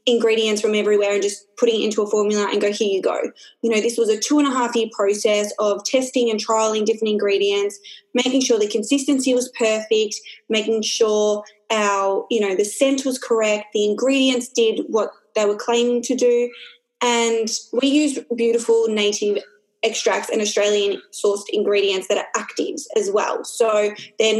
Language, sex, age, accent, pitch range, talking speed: English, female, 20-39, Australian, 210-250 Hz, 165 wpm